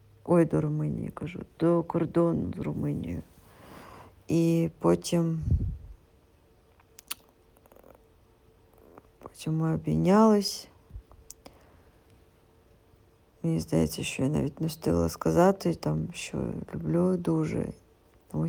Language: Ukrainian